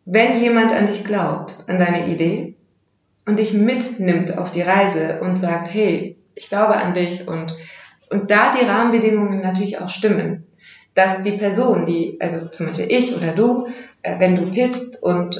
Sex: female